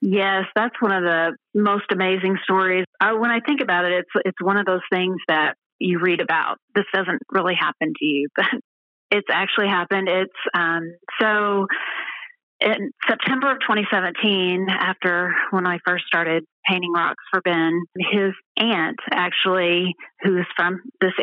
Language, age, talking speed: English, 30-49, 160 wpm